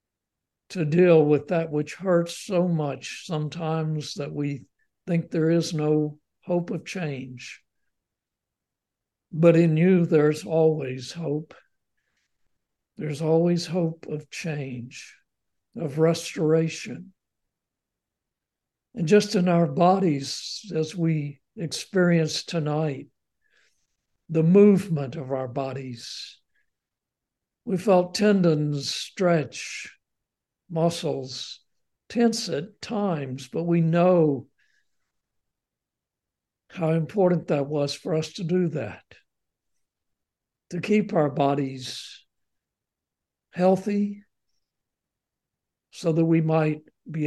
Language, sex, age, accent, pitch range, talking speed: English, male, 60-79, American, 145-175 Hz, 95 wpm